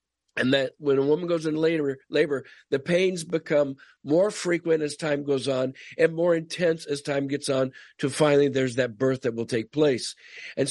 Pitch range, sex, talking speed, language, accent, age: 140-170 Hz, male, 195 wpm, English, American, 50-69